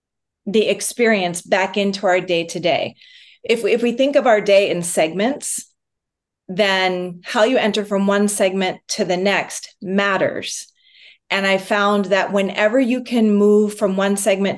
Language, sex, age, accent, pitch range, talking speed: English, female, 30-49, American, 185-215 Hz, 150 wpm